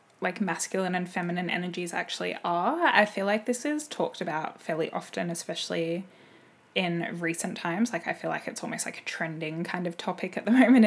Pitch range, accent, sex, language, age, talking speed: 170-190 Hz, Australian, female, English, 10-29, 195 wpm